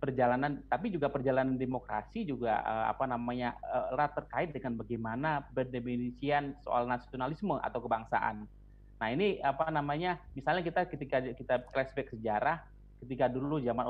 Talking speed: 140 wpm